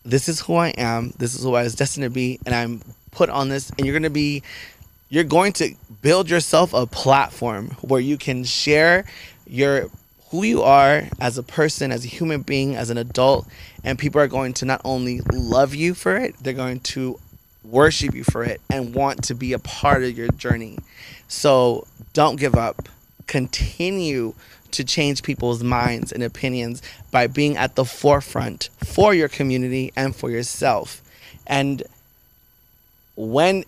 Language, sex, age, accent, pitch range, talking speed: English, male, 20-39, American, 120-145 Hz, 175 wpm